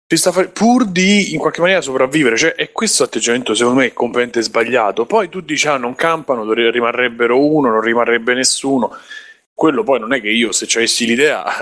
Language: Italian